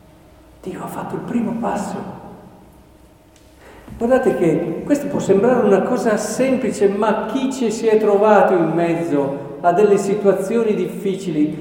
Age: 50-69